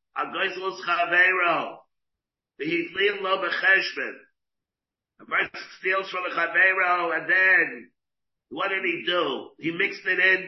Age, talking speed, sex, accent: 50-69, 80 wpm, male, American